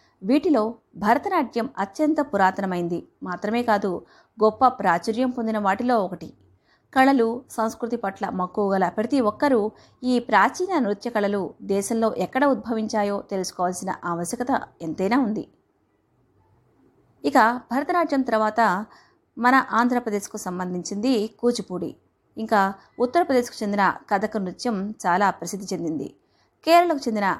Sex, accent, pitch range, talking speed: female, native, 195-260 Hz, 100 wpm